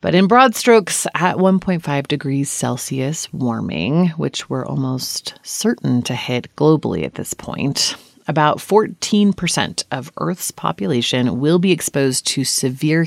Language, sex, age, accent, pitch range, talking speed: English, female, 30-49, American, 130-180 Hz, 135 wpm